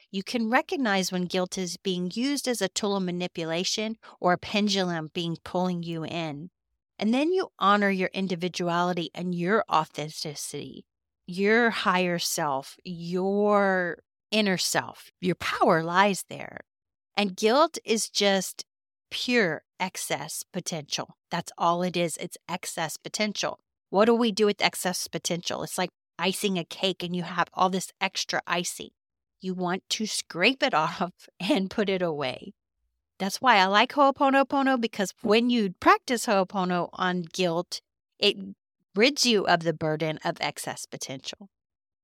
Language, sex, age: English, female, 40-59